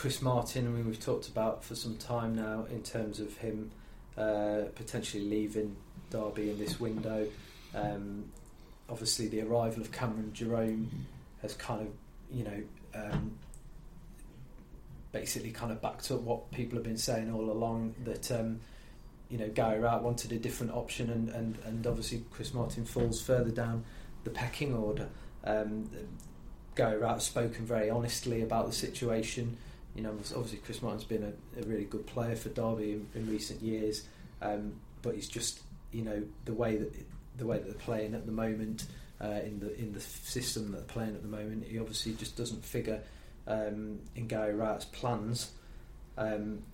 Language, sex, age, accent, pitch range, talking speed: English, male, 20-39, British, 105-115 Hz, 175 wpm